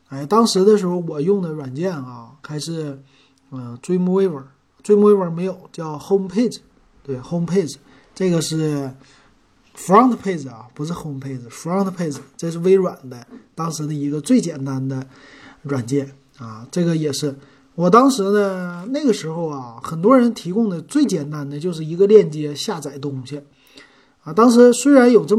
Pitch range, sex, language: 140-190 Hz, male, Chinese